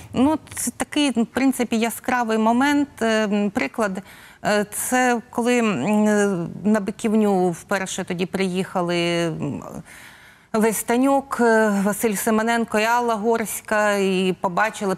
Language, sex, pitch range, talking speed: Ukrainian, female, 175-230 Hz, 90 wpm